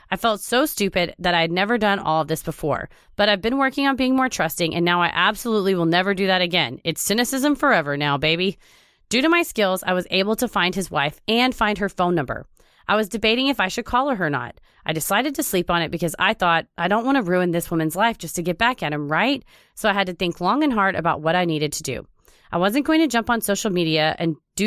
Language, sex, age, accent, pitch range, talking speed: English, female, 30-49, American, 165-220 Hz, 265 wpm